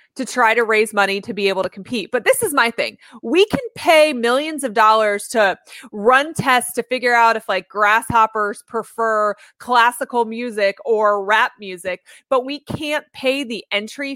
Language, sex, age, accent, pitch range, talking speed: English, female, 30-49, American, 205-265 Hz, 180 wpm